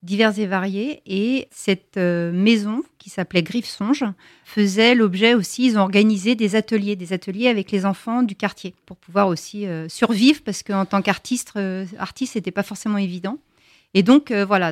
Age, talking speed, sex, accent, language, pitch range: 40-59, 180 wpm, female, French, French, 190-230 Hz